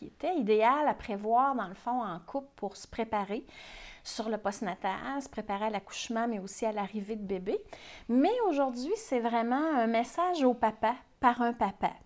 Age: 30-49